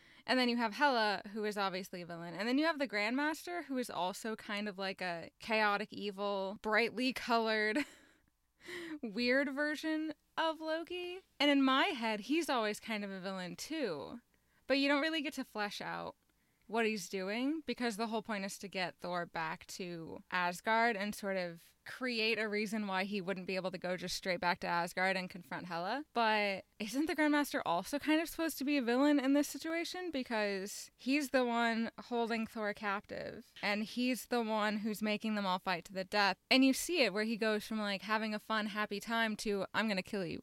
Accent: American